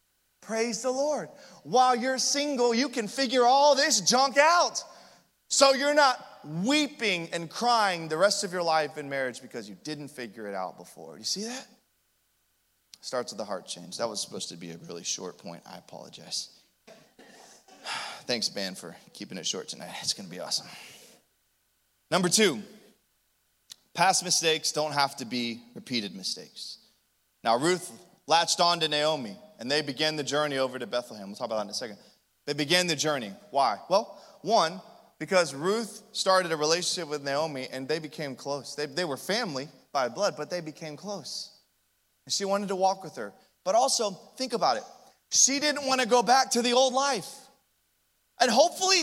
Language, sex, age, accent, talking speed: English, male, 20-39, American, 180 wpm